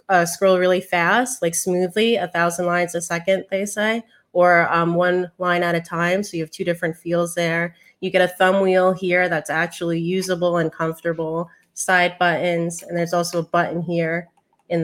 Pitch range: 175-200 Hz